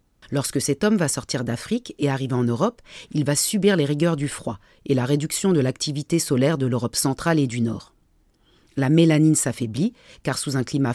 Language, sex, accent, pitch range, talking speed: French, female, French, 130-165 Hz, 195 wpm